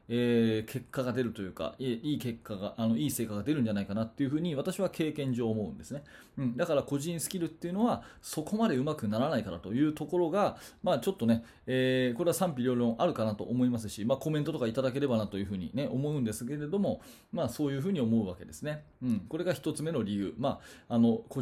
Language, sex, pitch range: Japanese, male, 115-165 Hz